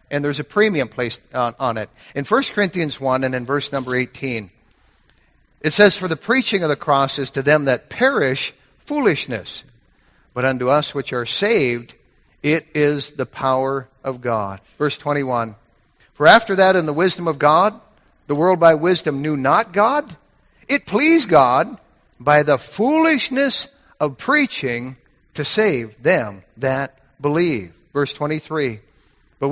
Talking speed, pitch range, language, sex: 150 wpm, 130-180 Hz, English, male